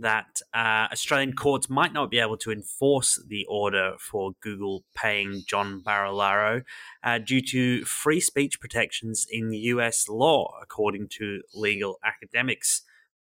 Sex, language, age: male, English, 20-39